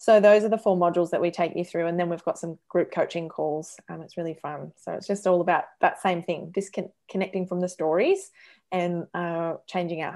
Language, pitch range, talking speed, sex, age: English, 170-205 Hz, 235 wpm, female, 20-39